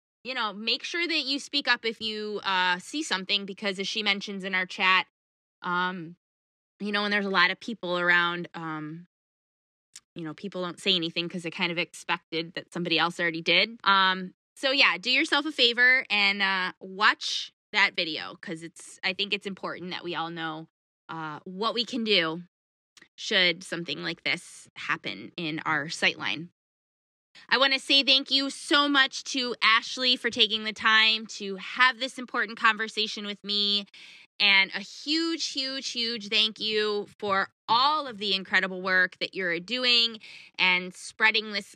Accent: American